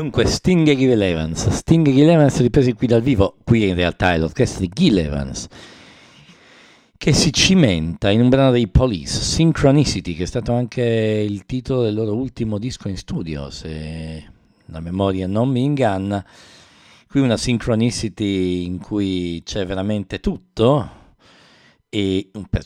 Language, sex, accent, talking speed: English, male, Italian, 155 wpm